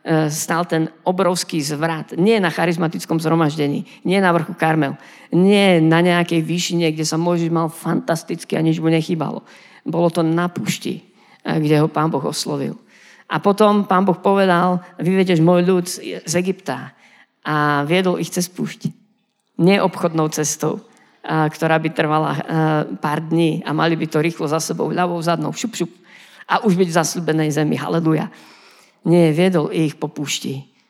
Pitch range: 155-180 Hz